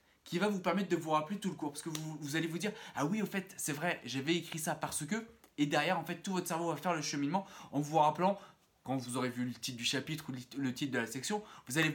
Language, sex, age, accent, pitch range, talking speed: French, male, 20-39, French, 145-195 Hz, 300 wpm